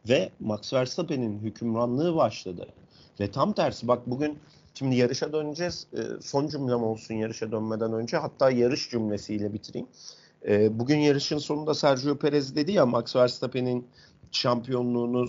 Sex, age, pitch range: male, 50-69, 110-140 Hz